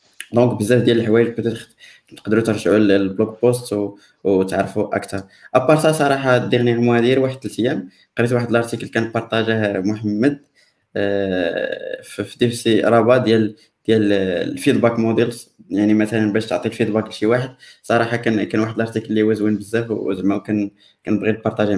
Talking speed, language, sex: 165 wpm, Arabic, male